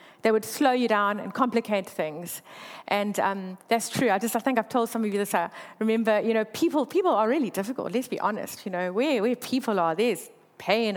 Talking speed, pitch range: 230 wpm, 205-260 Hz